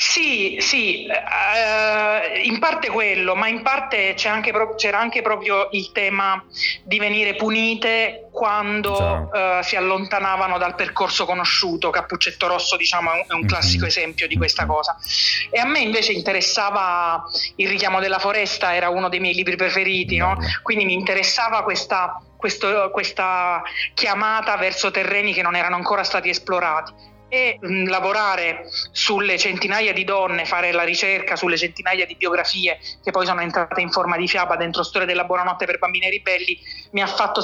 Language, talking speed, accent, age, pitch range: Italian, 160 wpm, native, 30-49, 180-210 Hz